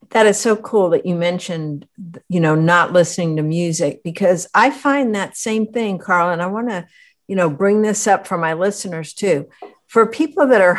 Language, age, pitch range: English, 60-79, 170-215 Hz